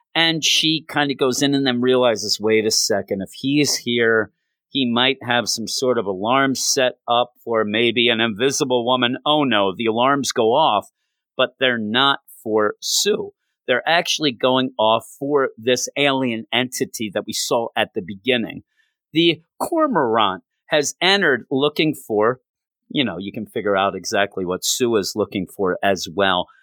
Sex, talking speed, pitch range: male, 165 wpm, 115-150 Hz